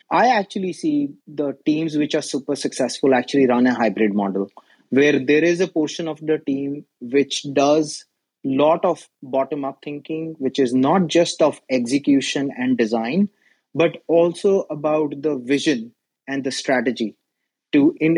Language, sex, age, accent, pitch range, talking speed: English, male, 30-49, Indian, 130-160 Hz, 155 wpm